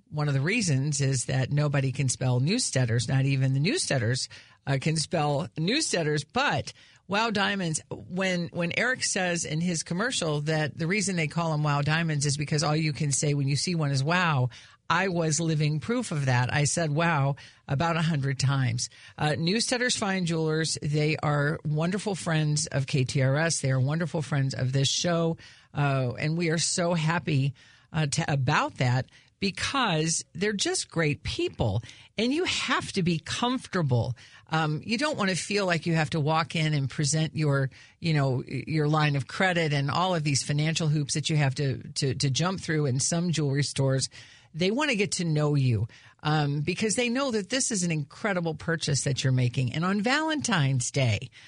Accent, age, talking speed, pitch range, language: American, 50-69, 185 wpm, 140-180 Hz, English